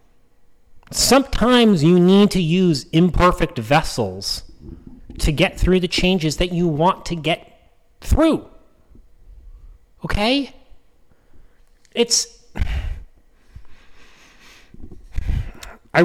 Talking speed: 80 wpm